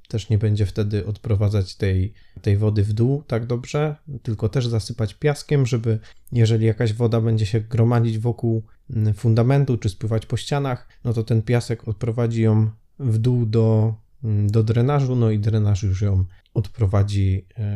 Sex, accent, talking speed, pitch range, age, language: male, native, 155 wpm, 105-120 Hz, 20-39, Polish